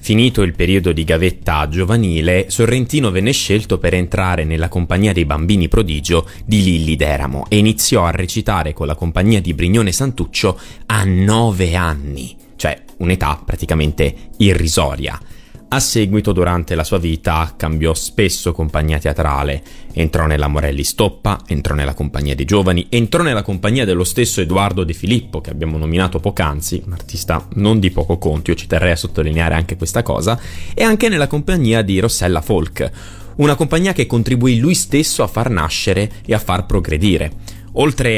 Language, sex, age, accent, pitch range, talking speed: Italian, male, 30-49, native, 80-105 Hz, 160 wpm